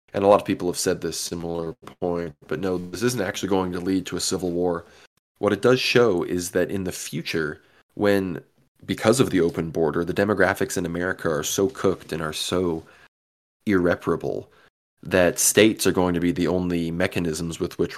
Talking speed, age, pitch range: 195 wpm, 20-39, 85-95 Hz